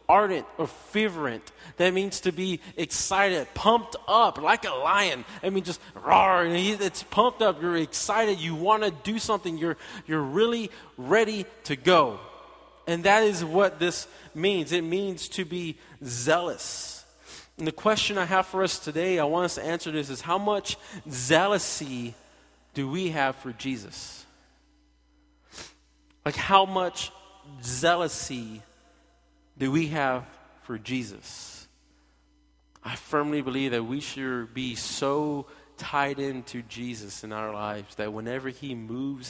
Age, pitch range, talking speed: 20-39, 115-170 Hz, 145 wpm